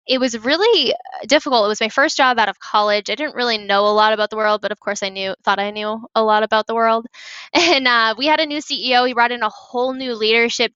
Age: 10-29